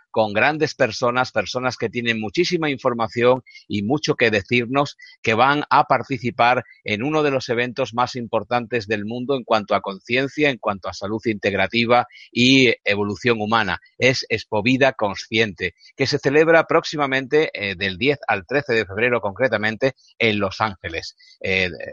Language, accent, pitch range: Spanish, Spanish, 105-130 Hz